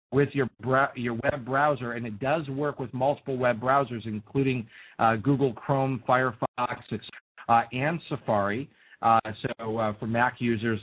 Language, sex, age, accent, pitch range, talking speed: English, male, 40-59, American, 115-140 Hz, 160 wpm